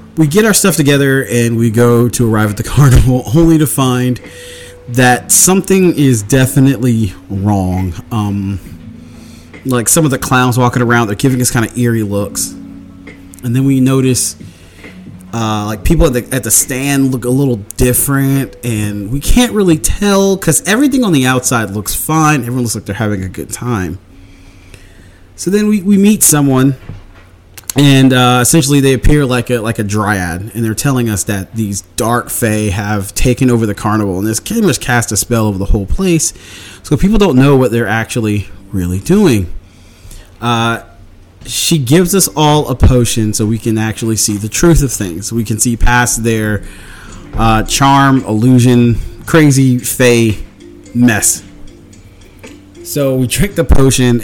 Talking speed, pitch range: 170 wpm, 105-135 Hz